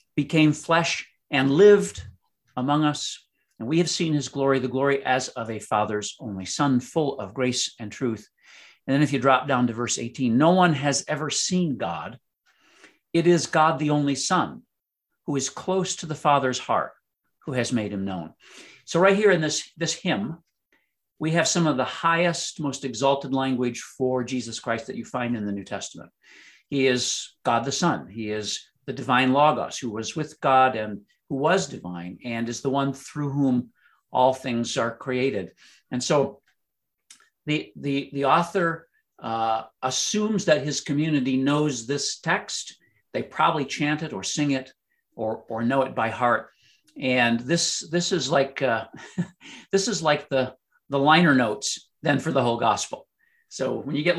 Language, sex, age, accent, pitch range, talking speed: English, male, 50-69, American, 120-155 Hz, 180 wpm